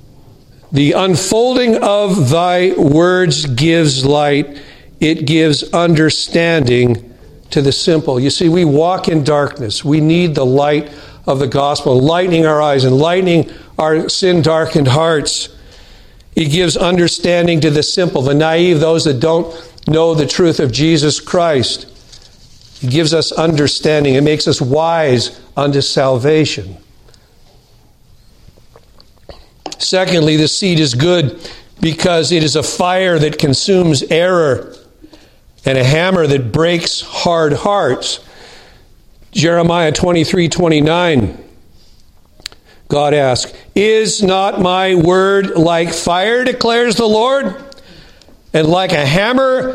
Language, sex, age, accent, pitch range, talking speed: English, male, 60-79, American, 145-180 Hz, 120 wpm